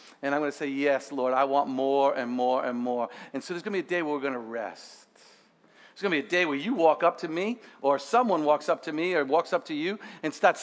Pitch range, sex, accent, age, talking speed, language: 185-240 Hz, male, American, 50-69, 295 wpm, English